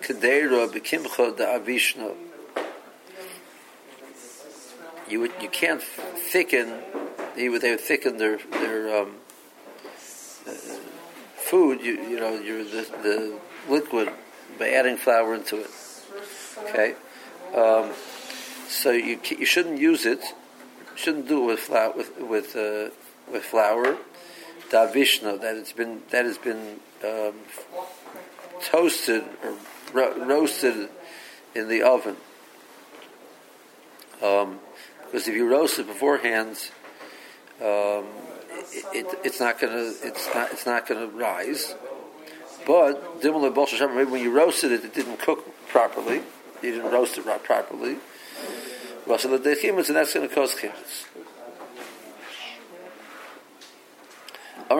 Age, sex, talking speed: 50-69, male, 125 wpm